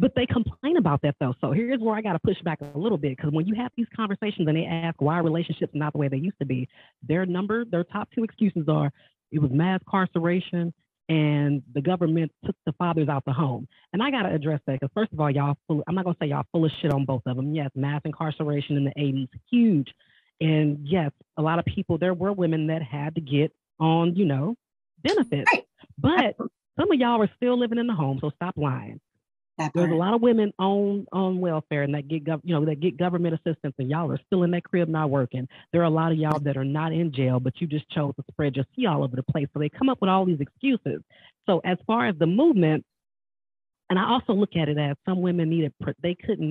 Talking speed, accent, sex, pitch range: 250 wpm, American, female, 145-185 Hz